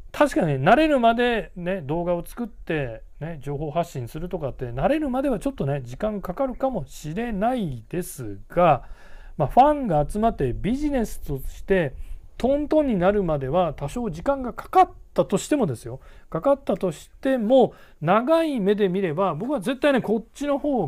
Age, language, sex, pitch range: 40-59, Japanese, male, 135-210 Hz